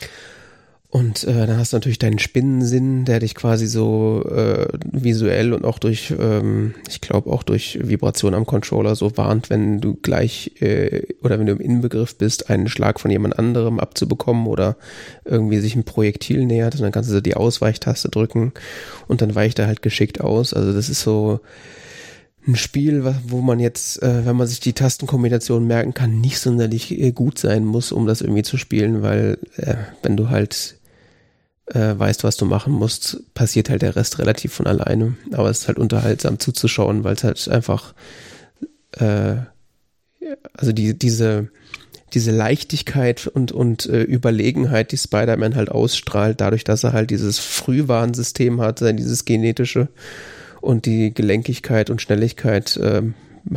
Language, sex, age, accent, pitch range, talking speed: German, male, 30-49, German, 110-125 Hz, 165 wpm